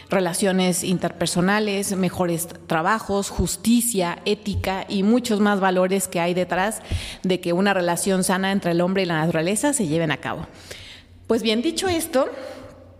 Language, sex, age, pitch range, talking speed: Spanish, female, 30-49, 180-220 Hz, 150 wpm